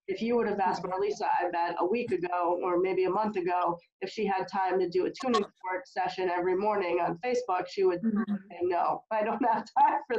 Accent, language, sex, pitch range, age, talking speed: American, English, female, 180-235 Hz, 20-39, 230 wpm